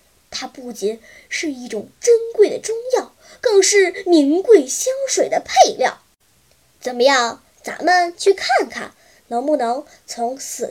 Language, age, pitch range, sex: Chinese, 10-29, 255-400 Hz, male